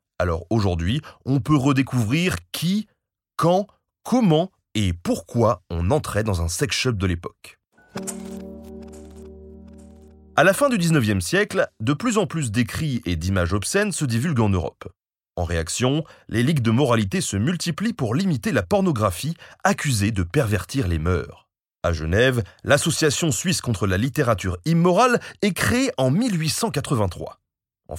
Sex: male